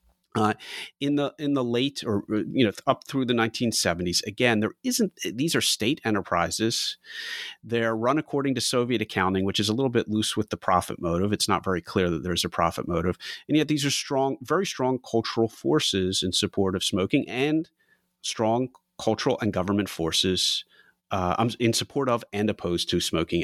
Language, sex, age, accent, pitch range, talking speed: English, male, 30-49, American, 95-135 Hz, 185 wpm